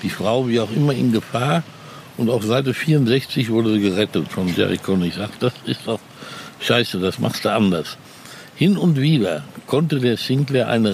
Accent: German